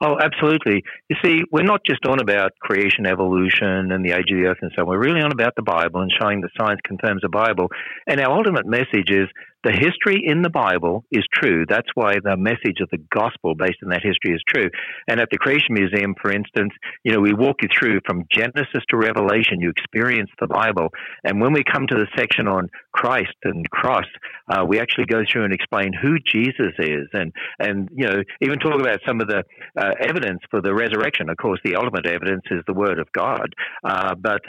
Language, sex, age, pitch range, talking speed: English, male, 60-79, 95-120 Hz, 220 wpm